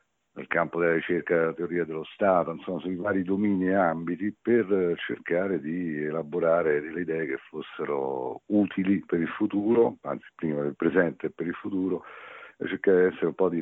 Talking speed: 180 wpm